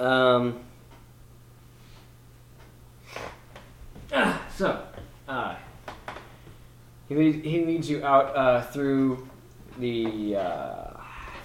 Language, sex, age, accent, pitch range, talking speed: English, male, 20-39, American, 100-120 Hz, 75 wpm